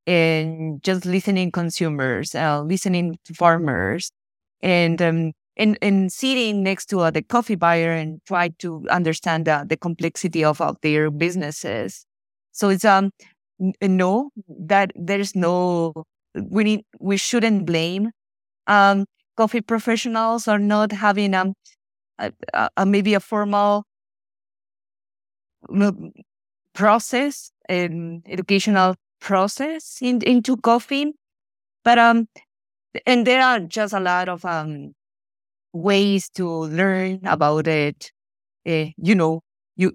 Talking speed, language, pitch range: 125 wpm, English, 160-210 Hz